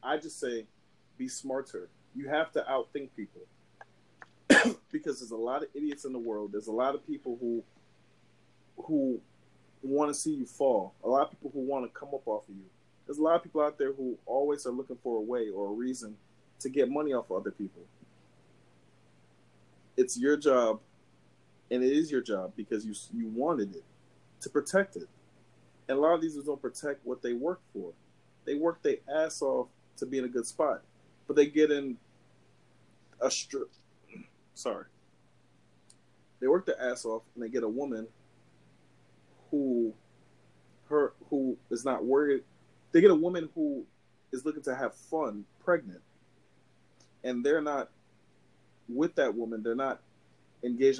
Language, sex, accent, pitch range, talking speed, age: English, male, American, 115-160 Hz, 175 wpm, 30-49